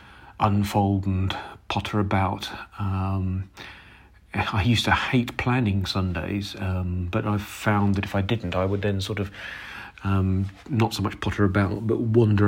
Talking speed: 155 wpm